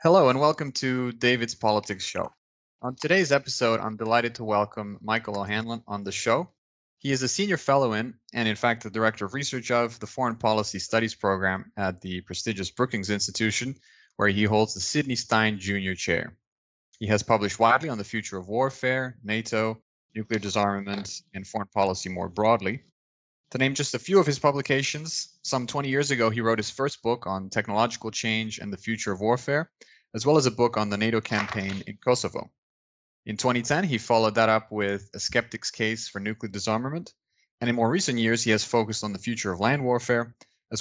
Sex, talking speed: male, 195 wpm